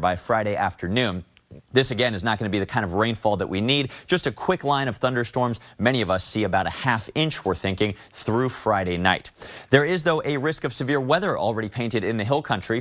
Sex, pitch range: male, 105-140 Hz